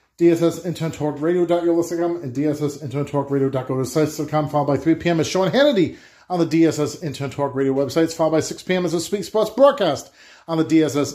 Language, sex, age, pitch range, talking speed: English, male, 40-59, 145-175 Hz, 170 wpm